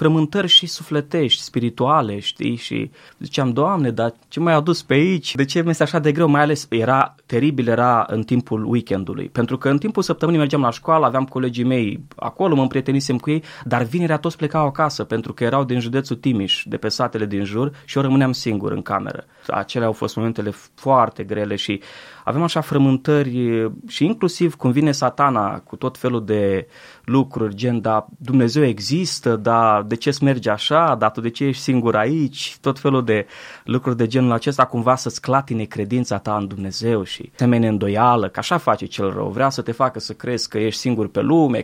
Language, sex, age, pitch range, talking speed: Romanian, male, 20-39, 115-150 Hz, 195 wpm